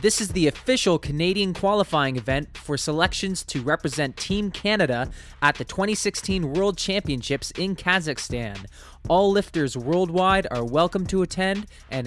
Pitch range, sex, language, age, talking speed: 125-190 Hz, male, English, 20-39, 140 wpm